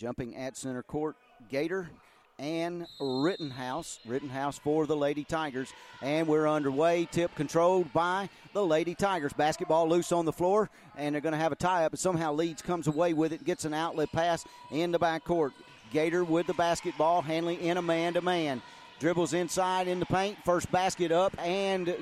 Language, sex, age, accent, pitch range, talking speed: English, male, 40-59, American, 155-185 Hz, 175 wpm